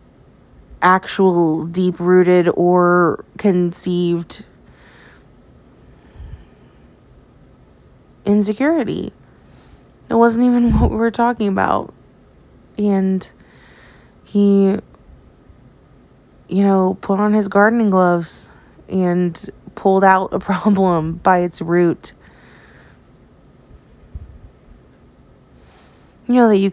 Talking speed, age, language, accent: 75 wpm, 20-39, English, American